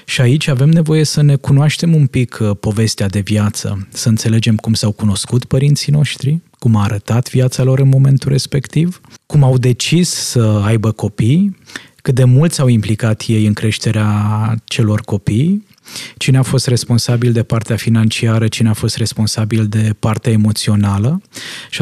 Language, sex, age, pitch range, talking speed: Romanian, male, 20-39, 110-140 Hz, 160 wpm